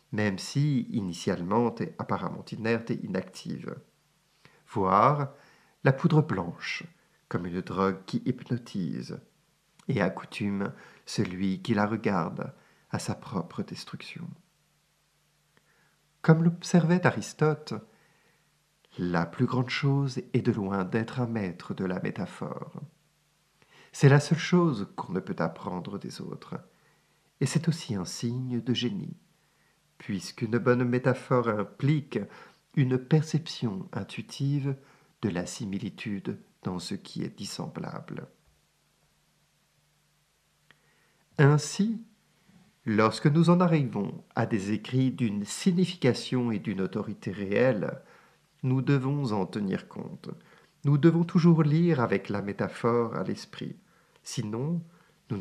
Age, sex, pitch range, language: 50-69, male, 115-160 Hz, French